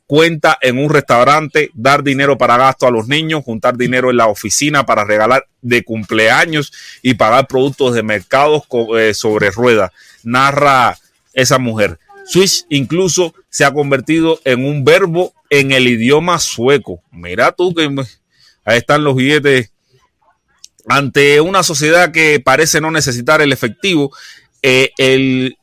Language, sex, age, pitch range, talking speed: Spanish, male, 30-49, 125-155 Hz, 145 wpm